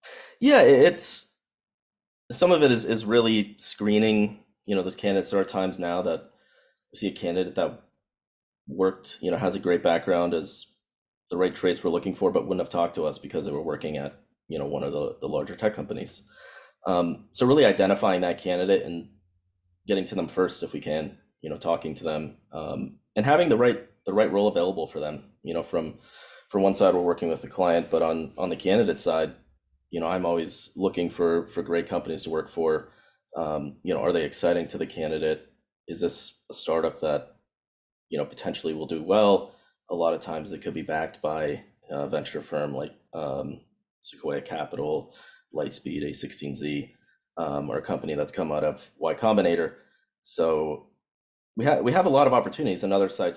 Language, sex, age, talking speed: English, male, 30-49, 195 wpm